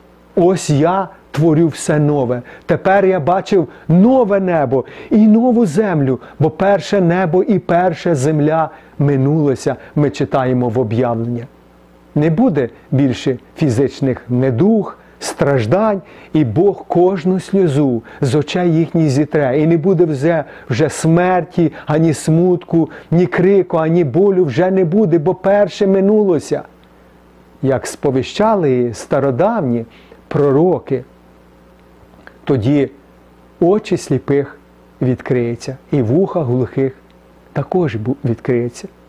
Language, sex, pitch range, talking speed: Ukrainian, male, 125-180 Hz, 110 wpm